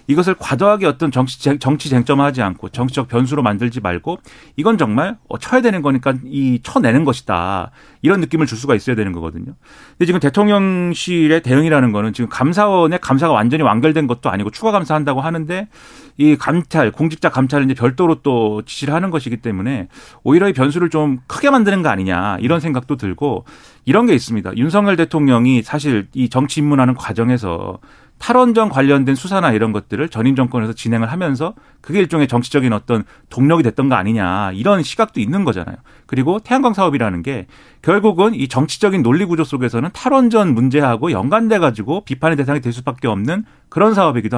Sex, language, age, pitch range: male, Korean, 40-59, 120-170 Hz